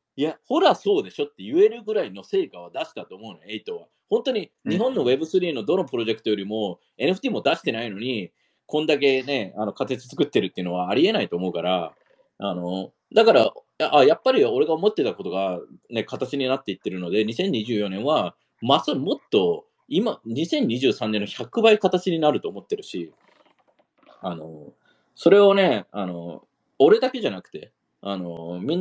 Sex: male